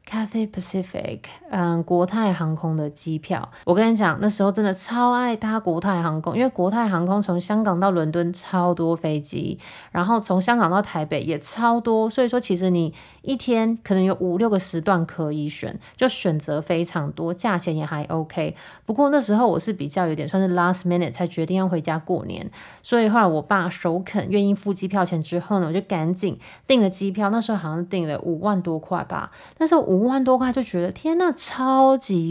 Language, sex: Chinese, female